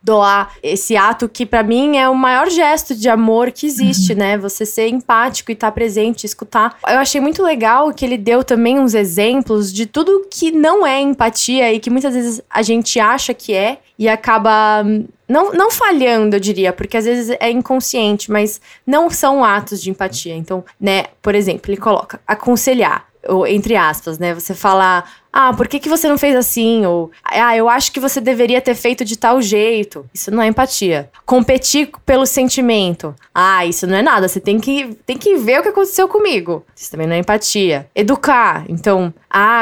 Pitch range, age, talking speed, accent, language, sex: 205-265 Hz, 20-39, 190 wpm, Brazilian, Portuguese, female